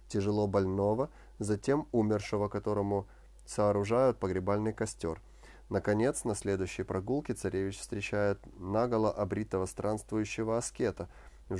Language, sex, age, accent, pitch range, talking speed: Russian, male, 30-49, native, 95-120 Hz, 100 wpm